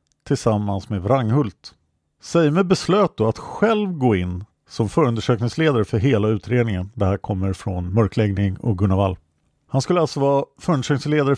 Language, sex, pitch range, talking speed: Swedish, male, 105-145 Hz, 150 wpm